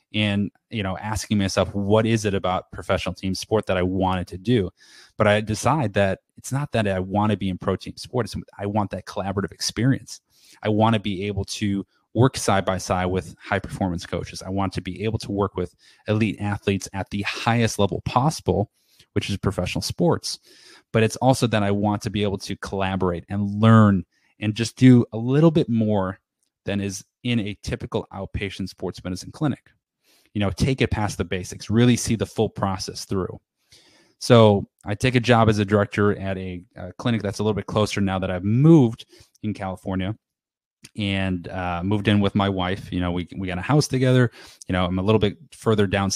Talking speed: 205 wpm